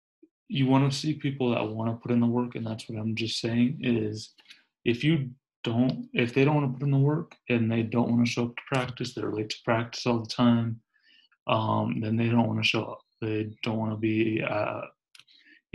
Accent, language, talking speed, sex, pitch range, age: American, English, 235 wpm, male, 110-125 Hz, 20-39